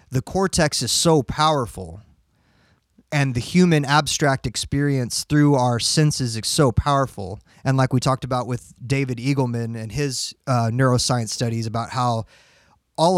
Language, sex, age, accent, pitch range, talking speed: English, male, 30-49, American, 125-150 Hz, 145 wpm